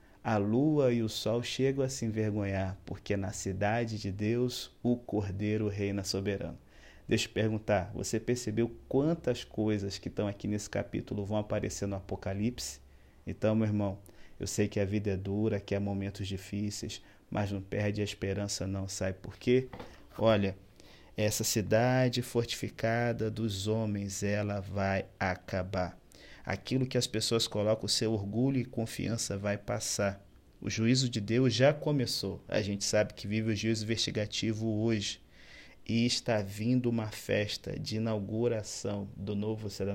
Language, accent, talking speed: Portuguese, Brazilian, 160 wpm